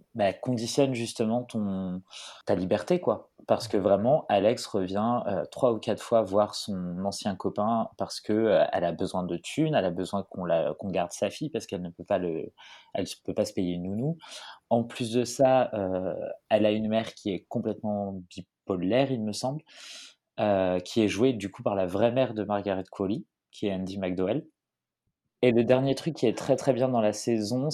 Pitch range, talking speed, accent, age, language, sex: 100-125 Hz, 205 wpm, French, 30-49, French, male